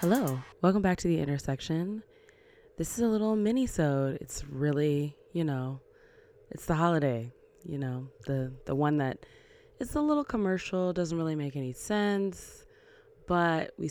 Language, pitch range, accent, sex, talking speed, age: English, 140-220 Hz, American, female, 150 wpm, 20-39